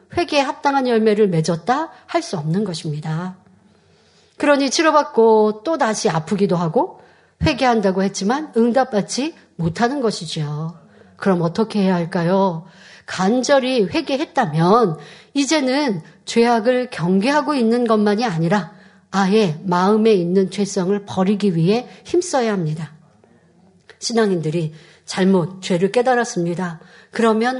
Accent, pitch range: native, 185-280 Hz